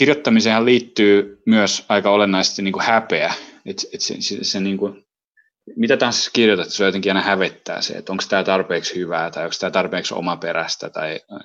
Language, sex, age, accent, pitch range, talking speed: Finnish, male, 30-49, native, 95-115 Hz, 175 wpm